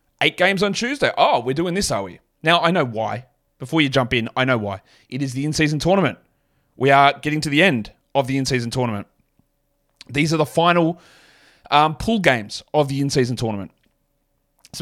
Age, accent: 30-49, Australian